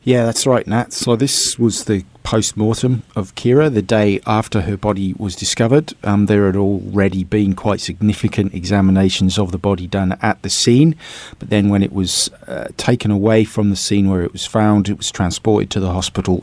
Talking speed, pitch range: 195 wpm, 95-110 Hz